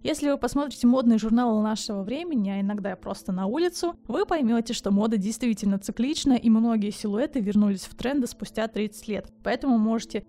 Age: 20-39